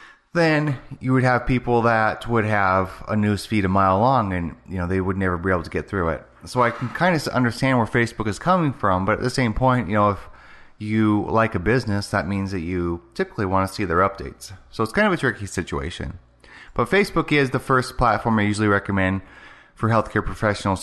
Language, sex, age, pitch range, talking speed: English, male, 30-49, 95-125 Hz, 225 wpm